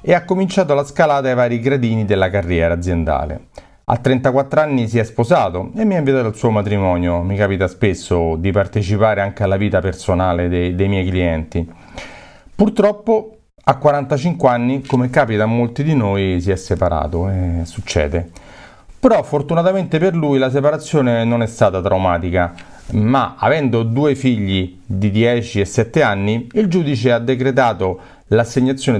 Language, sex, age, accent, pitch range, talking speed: Italian, male, 40-59, native, 95-140 Hz, 160 wpm